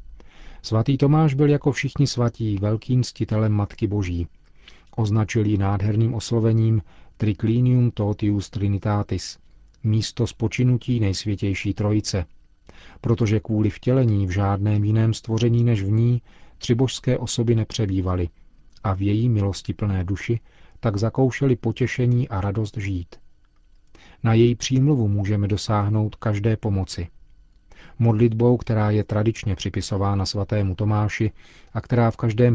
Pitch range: 100-115 Hz